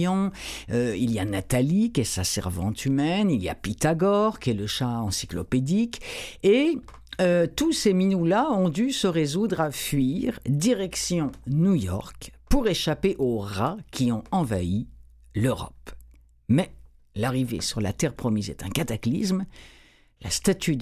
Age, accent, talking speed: 60-79, French, 150 wpm